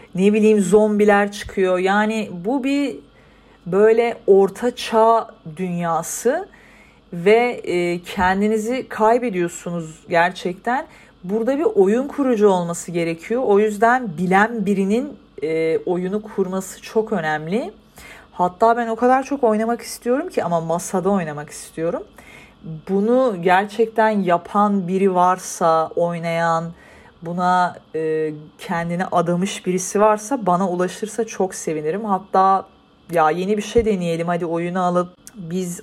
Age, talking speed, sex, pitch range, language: 40-59, 115 wpm, female, 175-225 Hz, Turkish